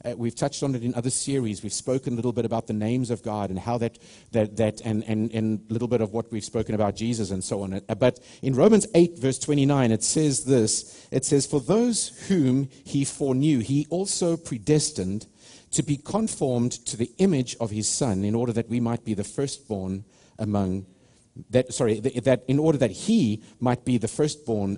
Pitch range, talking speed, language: 115-145 Hz, 205 wpm, English